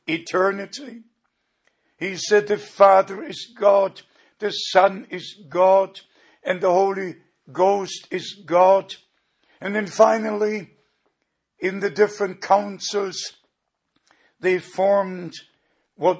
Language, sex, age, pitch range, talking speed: English, male, 60-79, 180-205 Hz, 100 wpm